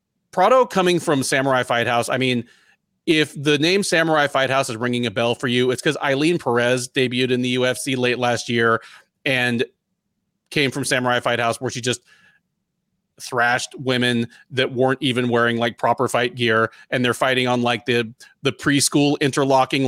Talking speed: 180 wpm